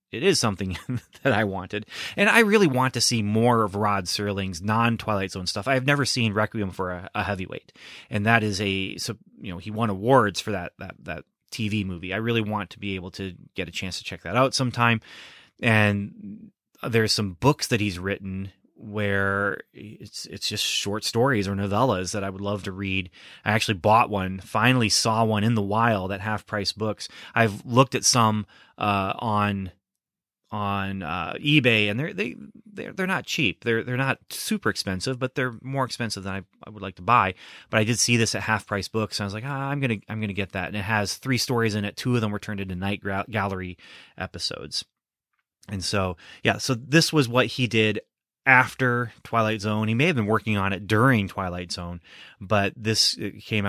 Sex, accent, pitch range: male, American, 100-120 Hz